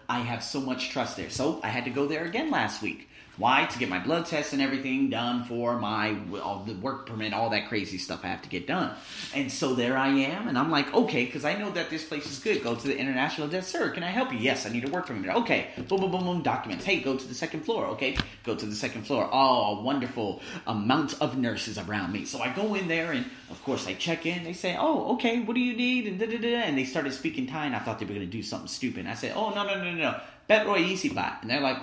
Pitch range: 120-195 Hz